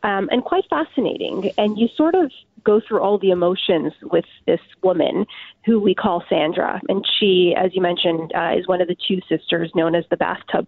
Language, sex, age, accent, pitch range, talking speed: English, female, 30-49, American, 180-215 Hz, 200 wpm